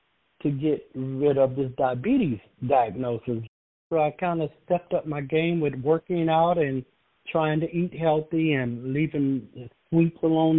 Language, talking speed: English, 160 wpm